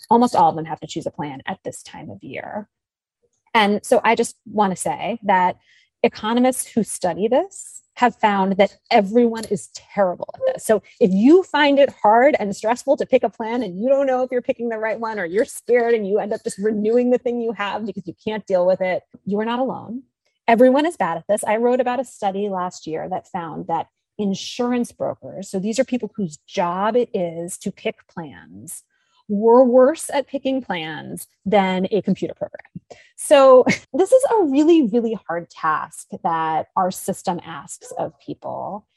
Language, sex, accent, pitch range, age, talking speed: English, female, American, 190-255 Hz, 30-49, 200 wpm